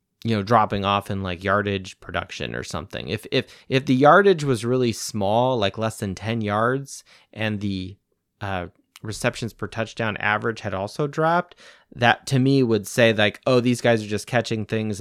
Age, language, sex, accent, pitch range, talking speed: 30-49, English, male, American, 100-125 Hz, 185 wpm